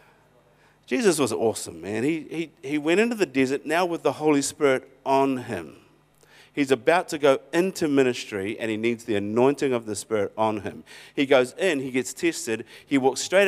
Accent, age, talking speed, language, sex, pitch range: Australian, 50-69, 190 wpm, English, male, 115-155 Hz